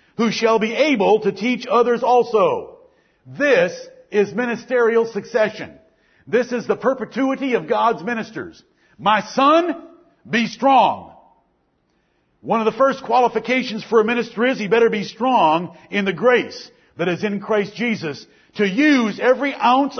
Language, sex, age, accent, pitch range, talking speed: English, male, 50-69, American, 215-265 Hz, 145 wpm